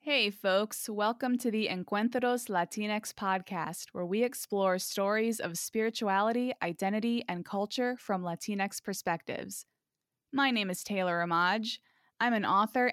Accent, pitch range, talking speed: American, 185-235 Hz, 130 wpm